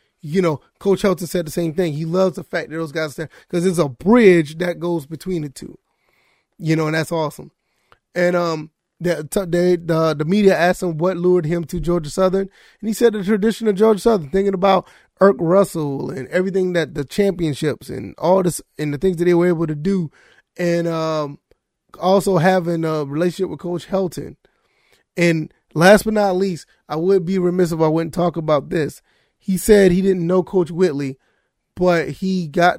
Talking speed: 200 wpm